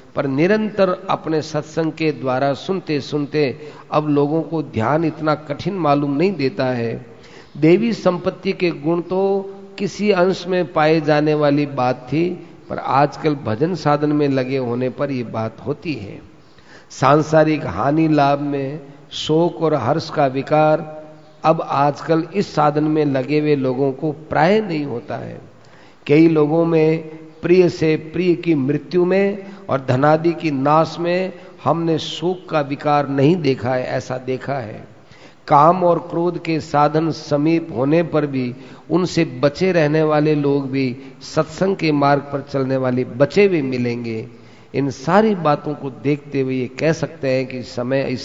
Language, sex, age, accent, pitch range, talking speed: Hindi, male, 50-69, native, 130-160 Hz, 155 wpm